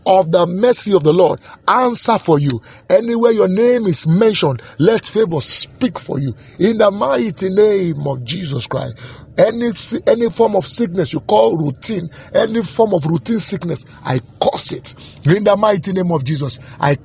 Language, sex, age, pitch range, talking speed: English, male, 50-69, 145-220 Hz, 170 wpm